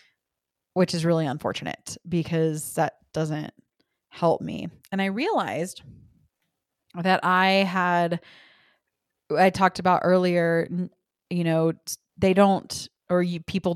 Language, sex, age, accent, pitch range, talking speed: English, female, 20-39, American, 165-185 Hz, 110 wpm